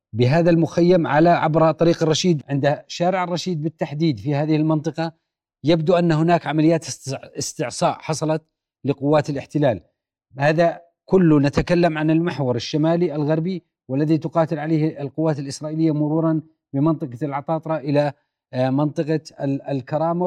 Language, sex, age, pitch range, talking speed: Arabic, male, 40-59, 145-170 Hz, 115 wpm